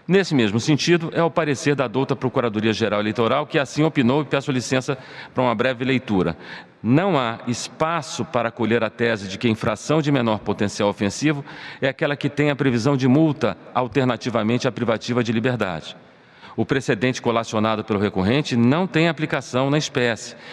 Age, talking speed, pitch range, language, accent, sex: 40-59, 170 wpm, 115-140 Hz, Portuguese, Brazilian, male